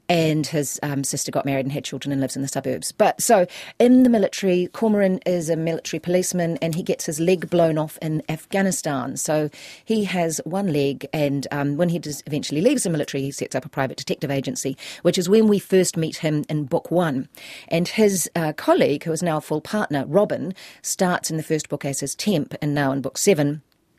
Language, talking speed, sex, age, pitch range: English, 220 wpm, female, 40-59, 150-180 Hz